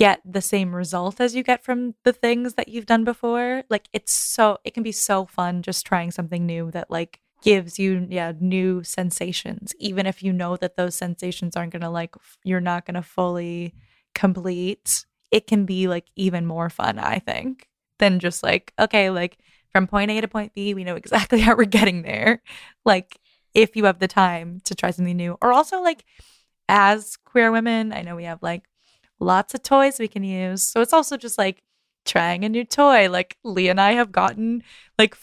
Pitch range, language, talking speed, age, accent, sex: 180-235 Hz, English, 200 wpm, 20-39, American, female